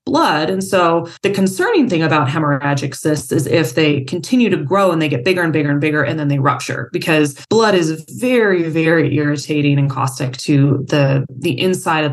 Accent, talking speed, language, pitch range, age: American, 200 wpm, English, 150-195 Hz, 20-39